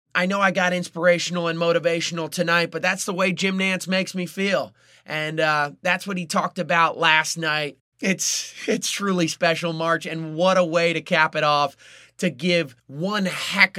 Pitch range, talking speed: 155-180 Hz, 185 wpm